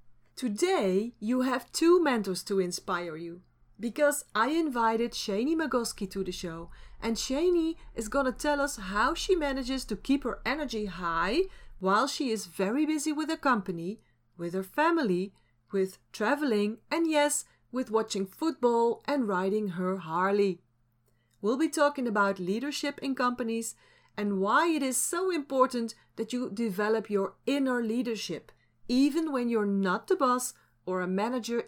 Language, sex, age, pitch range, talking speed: Dutch, female, 40-59, 190-275 Hz, 155 wpm